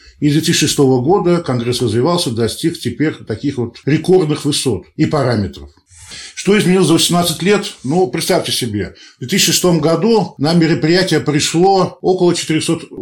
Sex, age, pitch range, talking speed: male, 10-29, 125-170 Hz, 140 wpm